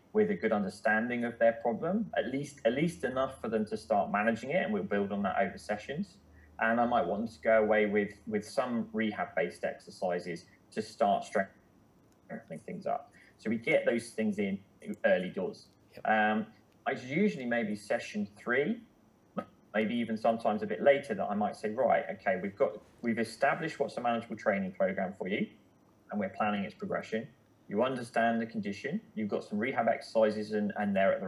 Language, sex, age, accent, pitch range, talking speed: English, male, 20-39, British, 105-150 Hz, 190 wpm